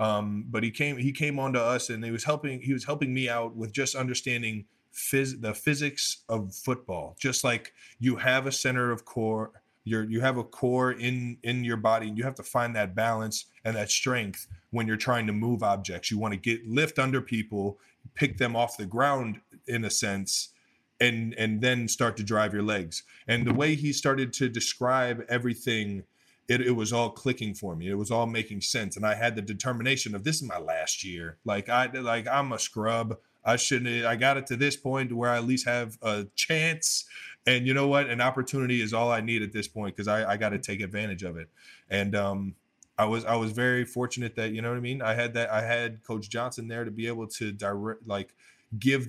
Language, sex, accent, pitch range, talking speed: English, male, American, 105-125 Hz, 225 wpm